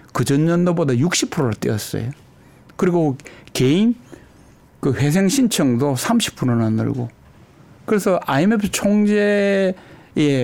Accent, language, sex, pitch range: native, Korean, male, 125-175 Hz